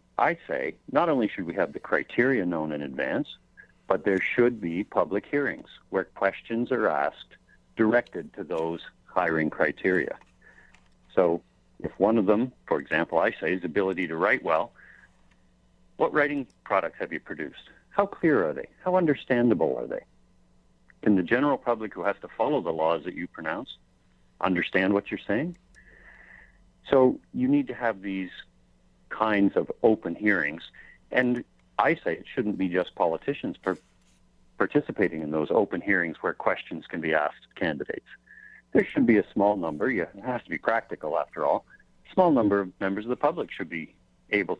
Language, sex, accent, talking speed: English, male, American, 170 wpm